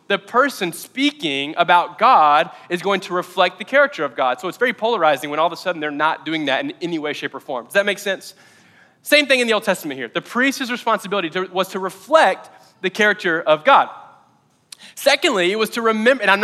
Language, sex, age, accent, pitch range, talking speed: English, male, 20-39, American, 155-215 Hz, 220 wpm